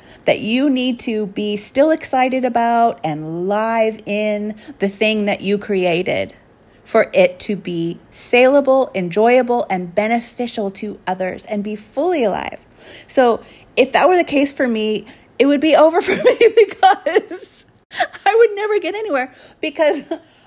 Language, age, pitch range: English, 30-49, 180-255 Hz